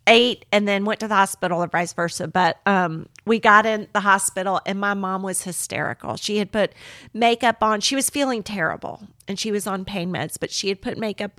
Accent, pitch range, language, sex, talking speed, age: American, 180-220 Hz, English, female, 220 wpm, 40-59